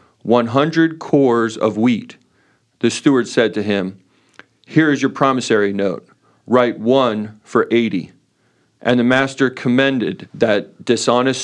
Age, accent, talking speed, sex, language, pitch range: 40-59, American, 130 wpm, male, English, 105-130 Hz